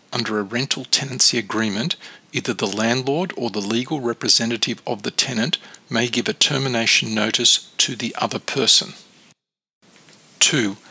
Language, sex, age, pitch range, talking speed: English, male, 50-69, 110-130 Hz, 140 wpm